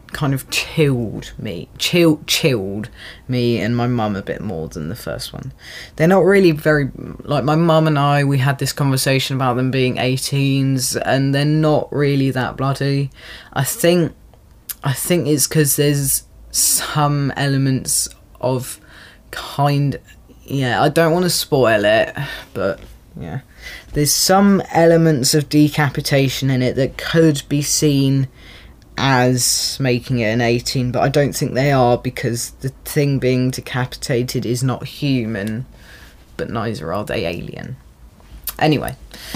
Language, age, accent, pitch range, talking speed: English, 10-29, British, 130-155 Hz, 145 wpm